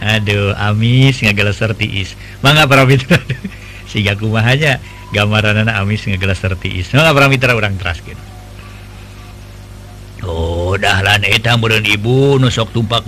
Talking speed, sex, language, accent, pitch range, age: 115 wpm, male, Indonesian, native, 100-145 Hz, 50-69